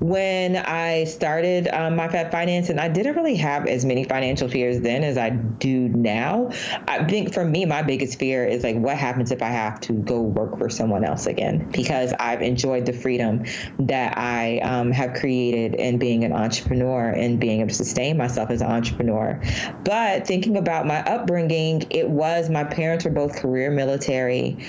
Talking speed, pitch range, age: 190 wpm, 130-175 Hz, 20-39